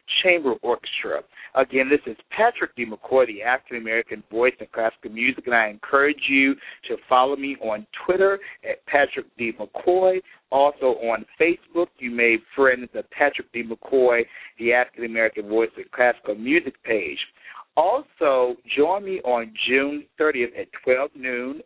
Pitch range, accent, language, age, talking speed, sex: 120-155 Hz, American, English, 50-69, 145 wpm, male